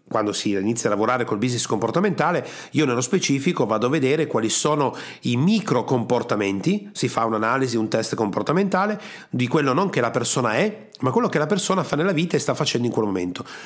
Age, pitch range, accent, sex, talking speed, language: 40-59, 120-175 Hz, native, male, 200 wpm, Italian